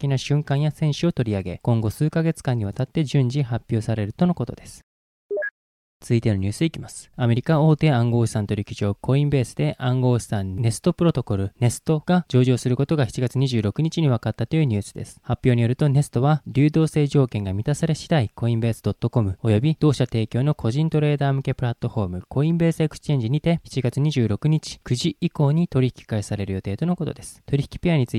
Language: Japanese